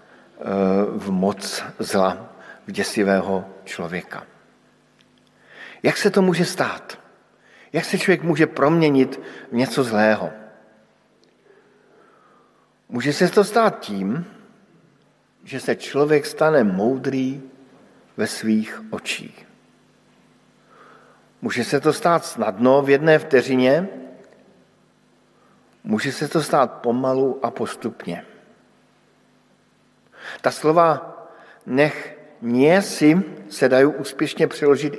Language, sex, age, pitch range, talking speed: Slovak, male, 50-69, 120-165 Hz, 95 wpm